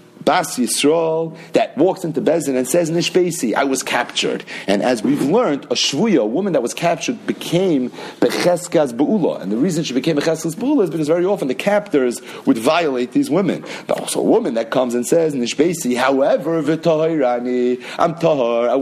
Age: 40-59